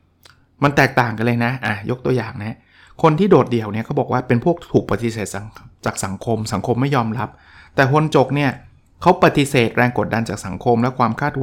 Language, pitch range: Thai, 110-150 Hz